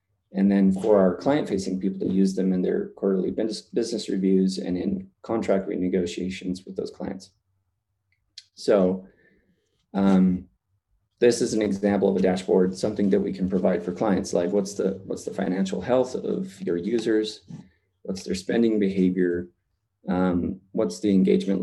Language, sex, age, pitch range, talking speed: English, male, 30-49, 95-105 Hz, 155 wpm